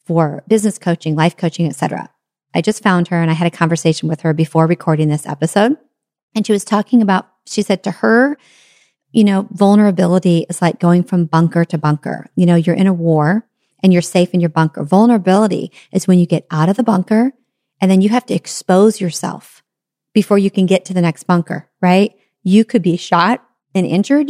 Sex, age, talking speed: female, 40-59, 205 wpm